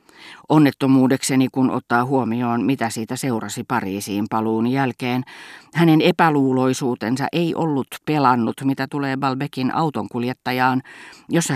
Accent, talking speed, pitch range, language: native, 105 wpm, 120-145 Hz, Finnish